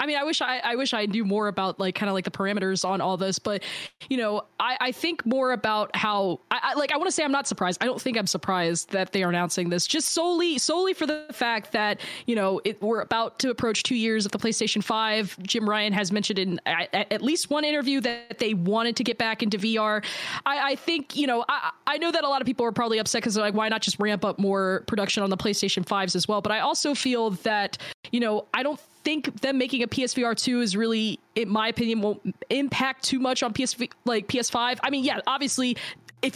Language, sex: English, female